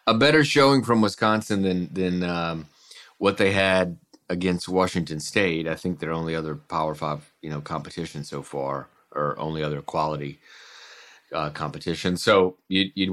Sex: male